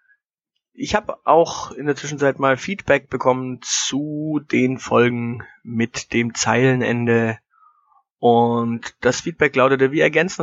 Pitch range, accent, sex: 115-145 Hz, German, male